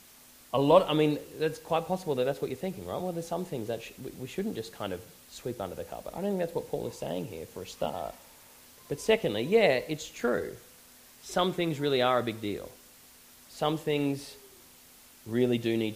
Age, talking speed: 20-39, 215 wpm